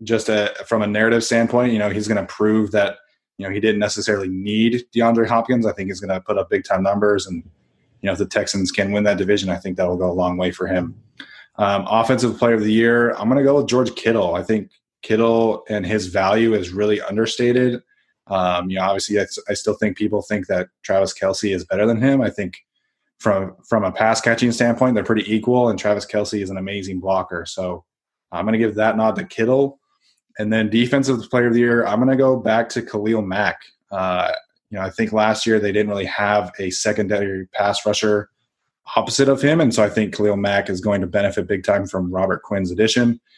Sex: male